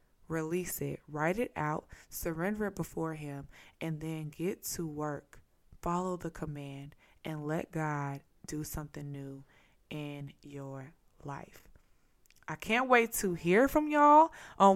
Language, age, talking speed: English, 20-39, 140 wpm